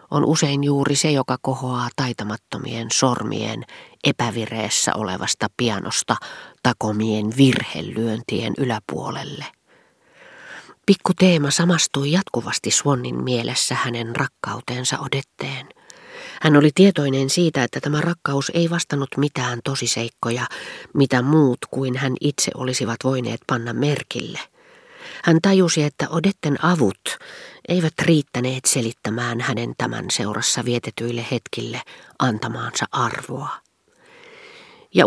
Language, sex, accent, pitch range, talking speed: Finnish, female, native, 120-165 Hz, 100 wpm